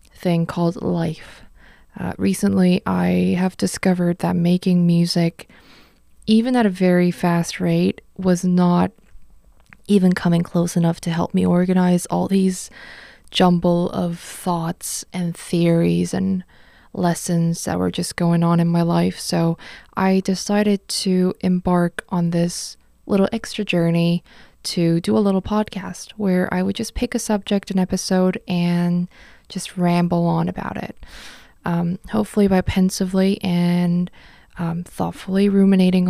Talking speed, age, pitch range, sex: 135 wpm, 20-39, 170-200 Hz, female